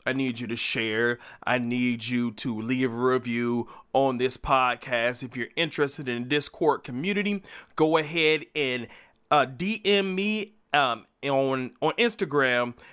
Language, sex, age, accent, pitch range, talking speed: English, male, 30-49, American, 130-195 Hz, 150 wpm